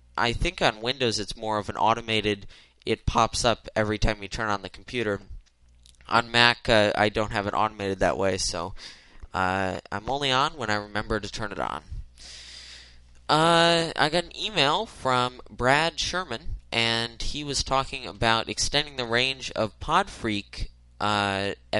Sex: male